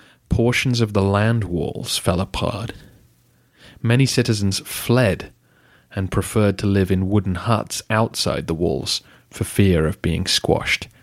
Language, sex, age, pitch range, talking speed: English, male, 30-49, 90-115 Hz, 135 wpm